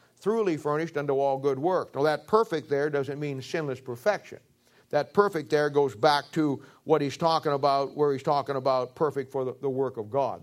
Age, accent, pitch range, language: 50-69, American, 130-155 Hz, English